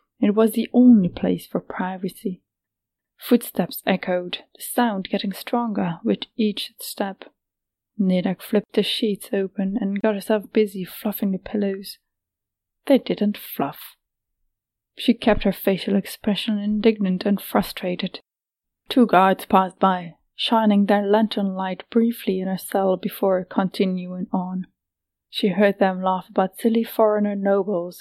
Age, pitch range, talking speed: 20-39, 185-220 Hz, 135 wpm